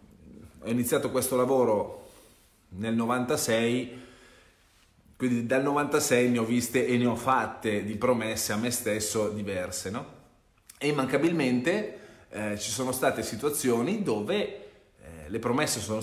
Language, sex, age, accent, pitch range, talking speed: Italian, male, 30-49, native, 100-125 Hz, 130 wpm